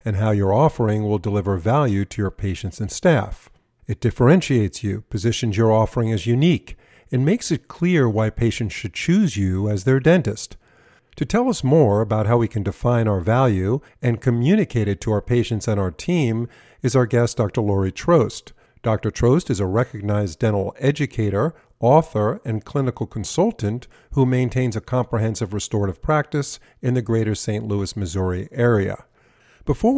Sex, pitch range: male, 105-130 Hz